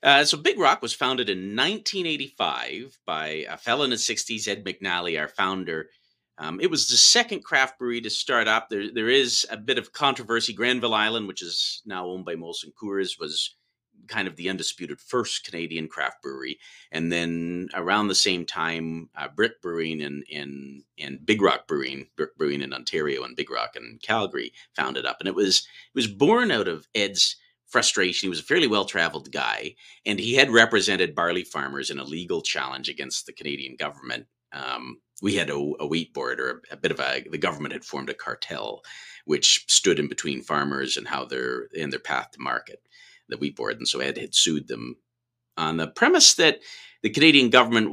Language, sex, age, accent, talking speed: English, male, 40-59, American, 200 wpm